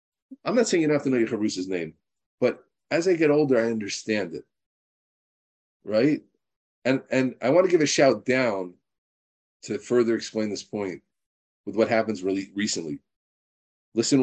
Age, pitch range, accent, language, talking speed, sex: 40-59, 100-135 Hz, American, English, 170 wpm, male